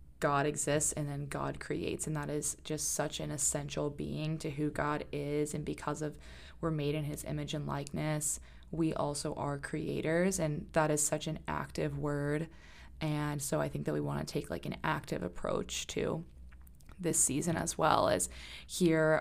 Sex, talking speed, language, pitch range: female, 185 wpm, English, 145-160 Hz